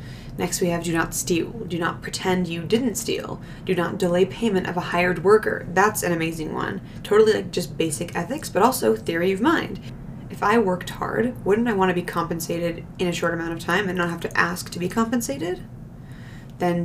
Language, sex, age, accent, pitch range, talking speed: English, female, 20-39, American, 170-205 Hz, 205 wpm